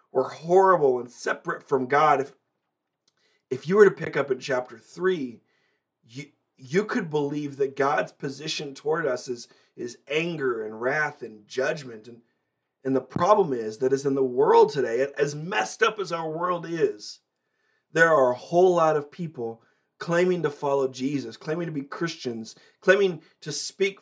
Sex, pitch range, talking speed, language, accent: male, 135-175 Hz, 170 wpm, English, American